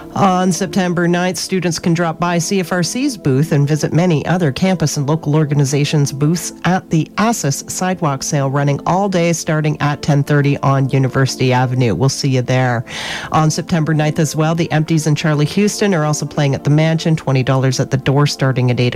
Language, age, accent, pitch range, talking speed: English, 40-59, American, 140-175 Hz, 185 wpm